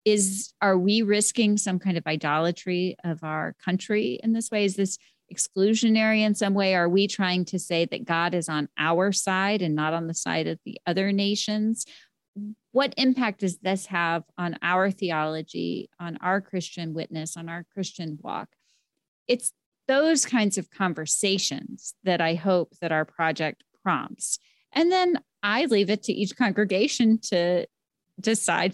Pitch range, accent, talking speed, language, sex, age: 165-210 Hz, American, 165 wpm, English, female, 40-59